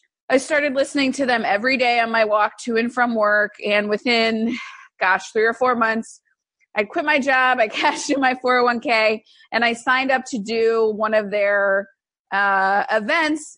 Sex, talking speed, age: female, 180 wpm, 30-49